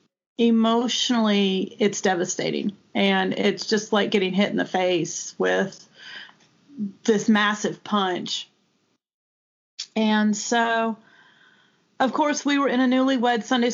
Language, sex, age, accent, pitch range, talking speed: English, female, 40-59, American, 205-250 Hz, 115 wpm